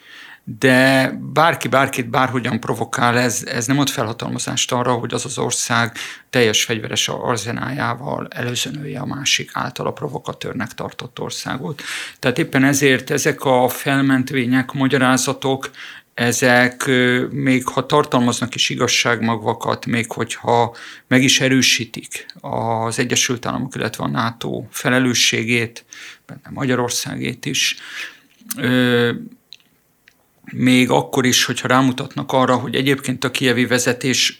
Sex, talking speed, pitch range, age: male, 115 wpm, 120-135 Hz, 50-69